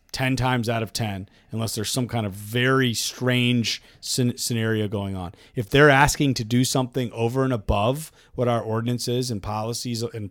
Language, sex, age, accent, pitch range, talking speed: English, male, 40-59, American, 110-130 Hz, 175 wpm